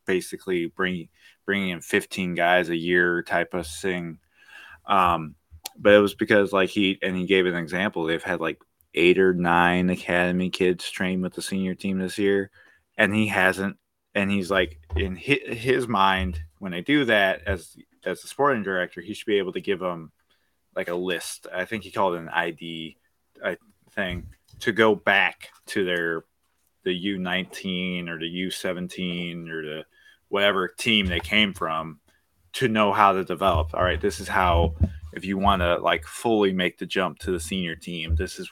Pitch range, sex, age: 85-95 Hz, male, 20-39